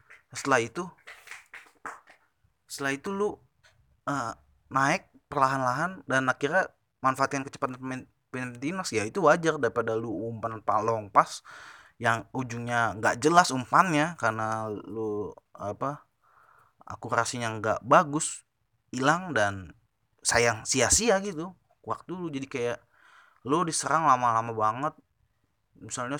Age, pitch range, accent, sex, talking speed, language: 20-39, 110-140 Hz, native, male, 110 wpm, Indonesian